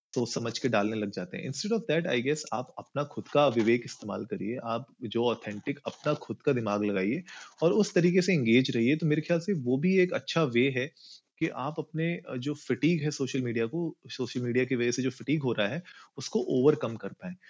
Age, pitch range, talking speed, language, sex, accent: 30-49, 115-150 Hz, 225 wpm, Hindi, male, native